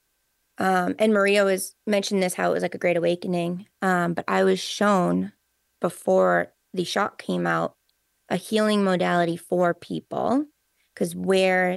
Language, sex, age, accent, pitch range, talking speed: English, female, 20-39, American, 175-195 Hz, 155 wpm